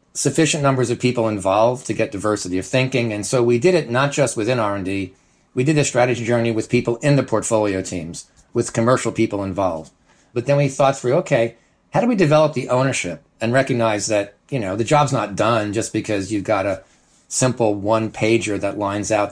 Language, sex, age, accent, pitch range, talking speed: English, male, 40-59, American, 105-125 Hz, 205 wpm